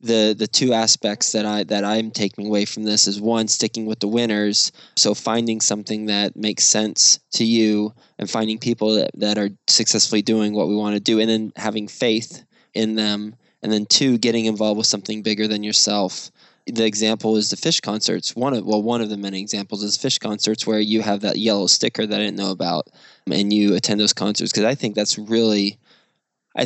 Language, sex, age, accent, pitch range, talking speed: English, male, 20-39, American, 100-110 Hz, 210 wpm